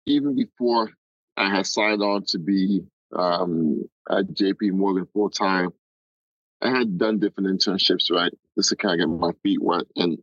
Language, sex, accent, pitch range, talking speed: English, male, American, 95-110 Hz, 175 wpm